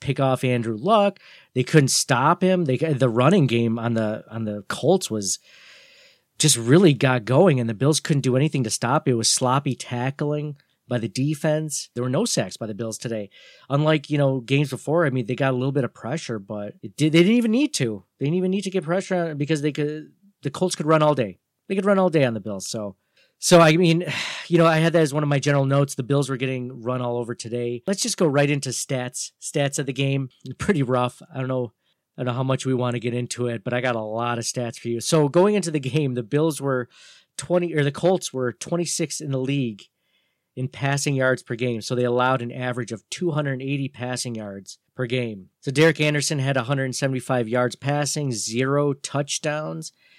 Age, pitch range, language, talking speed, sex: 40-59, 125-155 Hz, English, 240 wpm, male